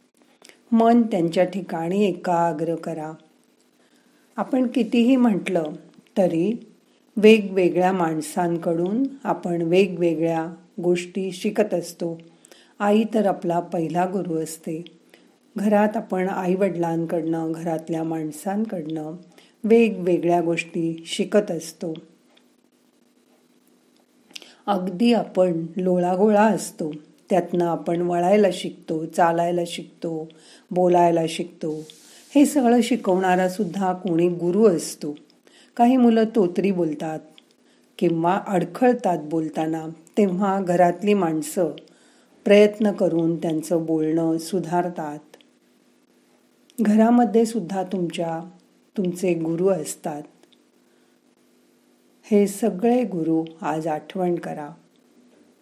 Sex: female